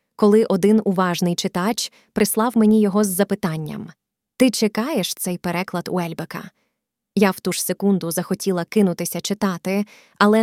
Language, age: Ukrainian, 20-39